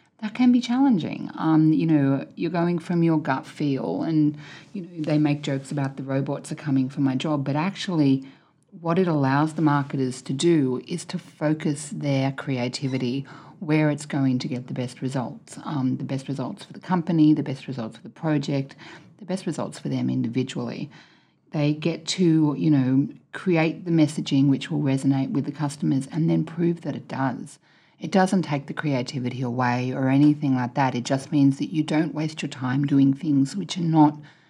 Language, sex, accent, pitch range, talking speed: English, female, Australian, 135-165 Hz, 195 wpm